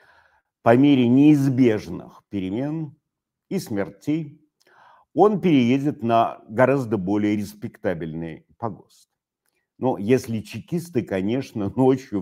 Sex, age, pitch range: male, 50-69, 100-135 Hz